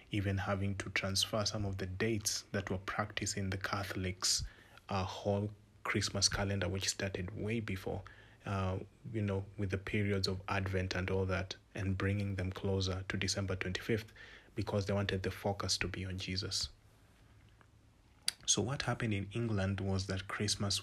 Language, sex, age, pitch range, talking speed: English, male, 30-49, 95-105 Hz, 165 wpm